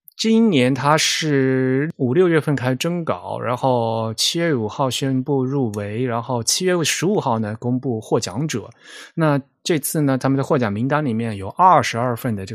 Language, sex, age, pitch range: Chinese, male, 20-39, 110-135 Hz